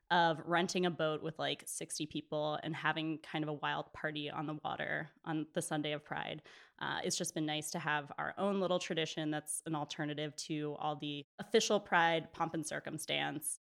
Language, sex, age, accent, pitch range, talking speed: English, female, 20-39, American, 155-200 Hz, 200 wpm